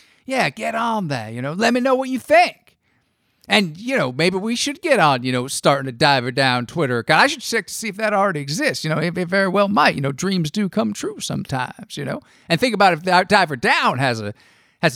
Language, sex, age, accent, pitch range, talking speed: English, male, 50-69, American, 160-215 Hz, 250 wpm